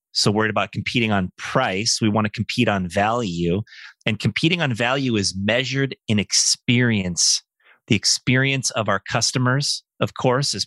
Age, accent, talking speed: 30-49, American, 150 wpm